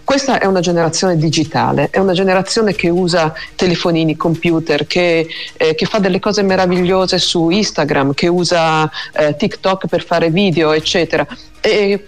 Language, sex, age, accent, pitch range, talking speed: Italian, female, 50-69, native, 150-200 Hz, 145 wpm